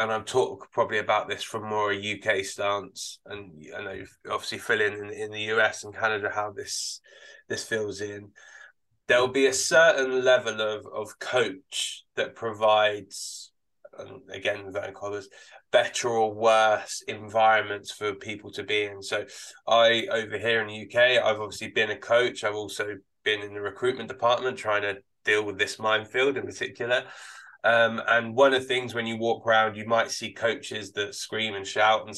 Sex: male